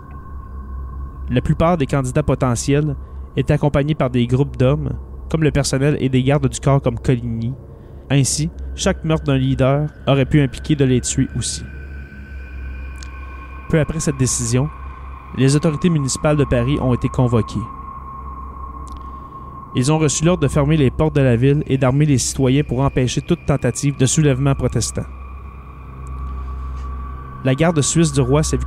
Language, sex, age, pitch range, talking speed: French, male, 30-49, 85-145 Hz, 155 wpm